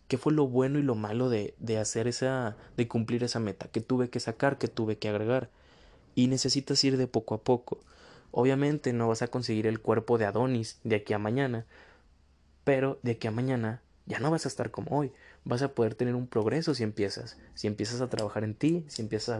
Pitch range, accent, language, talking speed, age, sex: 110-130 Hz, Mexican, Spanish, 225 wpm, 20-39, male